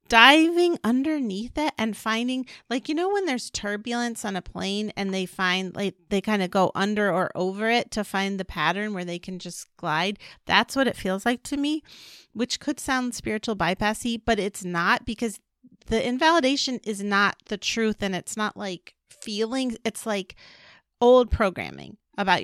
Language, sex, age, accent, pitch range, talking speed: English, female, 40-59, American, 200-250 Hz, 180 wpm